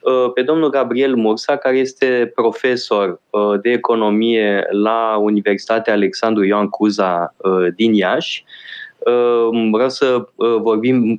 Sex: male